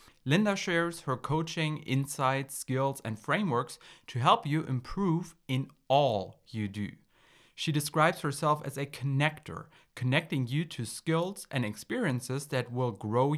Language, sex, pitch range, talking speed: English, male, 115-155 Hz, 140 wpm